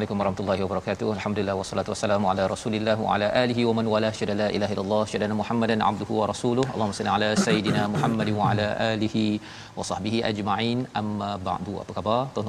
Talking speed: 185 wpm